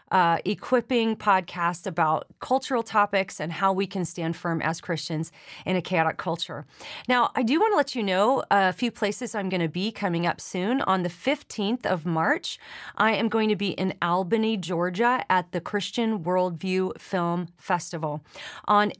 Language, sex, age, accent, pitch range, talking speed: English, female, 30-49, American, 175-210 Hz, 175 wpm